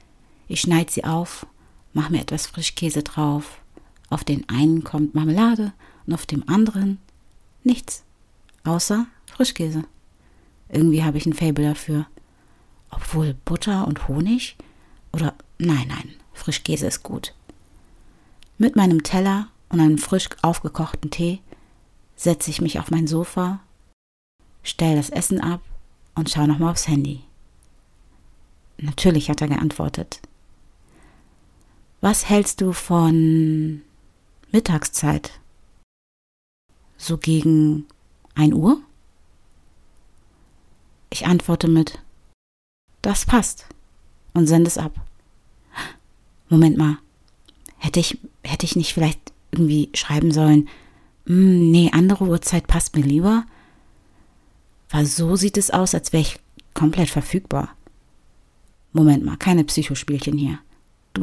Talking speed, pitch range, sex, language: 115 wpm, 140-170 Hz, female, German